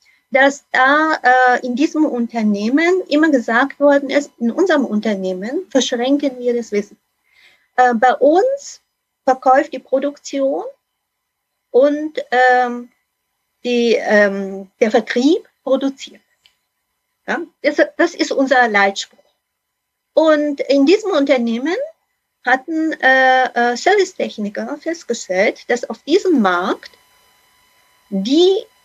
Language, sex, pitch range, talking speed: German, female, 235-295 Hz, 100 wpm